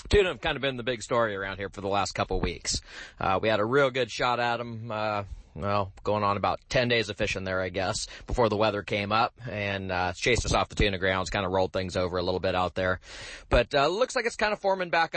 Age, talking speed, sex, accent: 30-49, 275 wpm, male, American